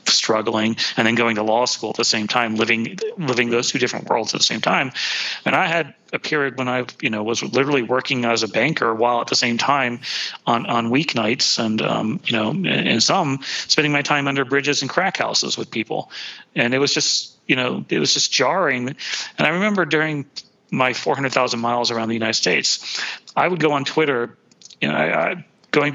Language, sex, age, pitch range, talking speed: English, male, 40-59, 115-140 Hz, 215 wpm